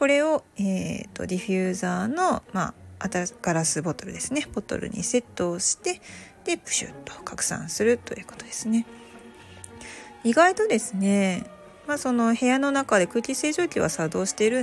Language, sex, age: Japanese, female, 40-59